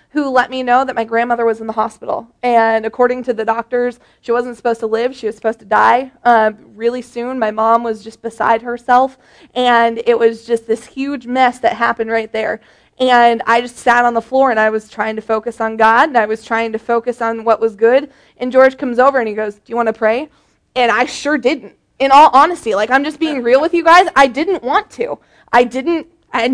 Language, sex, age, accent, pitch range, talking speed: English, female, 20-39, American, 230-275 Hz, 240 wpm